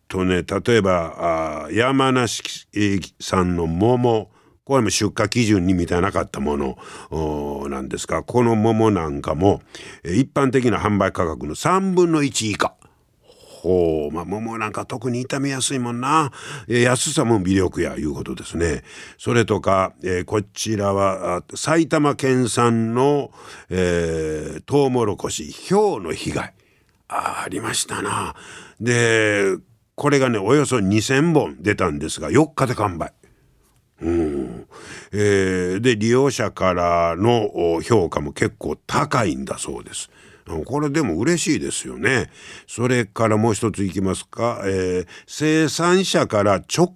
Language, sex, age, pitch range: Japanese, male, 50-69, 95-140 Hz